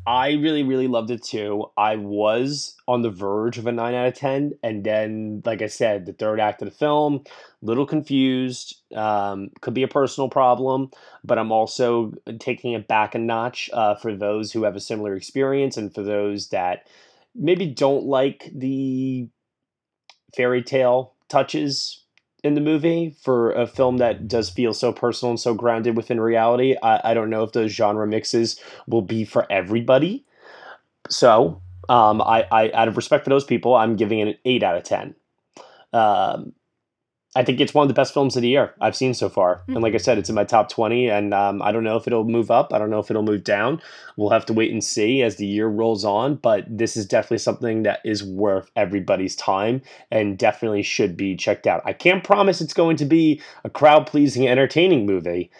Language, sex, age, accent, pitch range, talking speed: English, male, 20-39, American, 105-130 Hz, 205 wpm